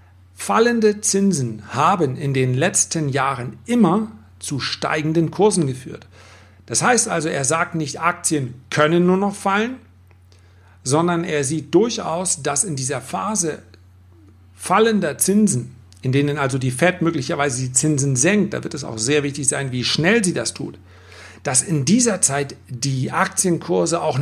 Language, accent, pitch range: German, German, 115-170 Hz